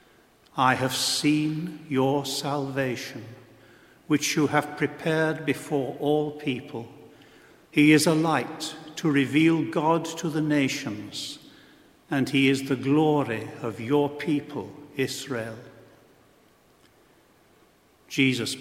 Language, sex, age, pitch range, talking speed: English, male, 60-79, 125-150 Hz, 105 wpm